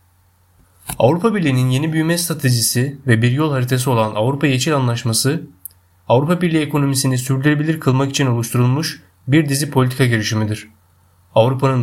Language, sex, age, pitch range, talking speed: Turkish, male, 30-49, 110-145 Hz, 125 wpm